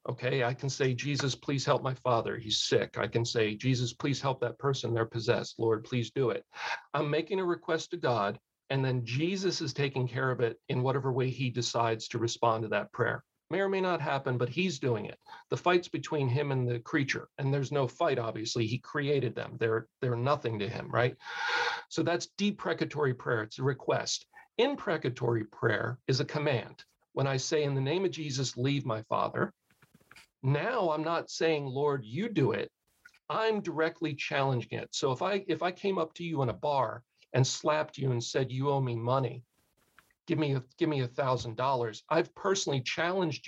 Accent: American